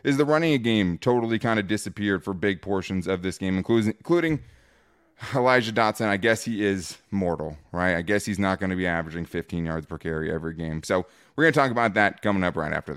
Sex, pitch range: male, 95-135 Hz